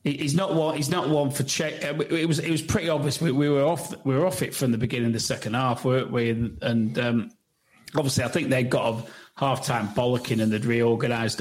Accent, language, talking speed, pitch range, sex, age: British, English, 230 wpm, 120-145 Hz, male, 40-59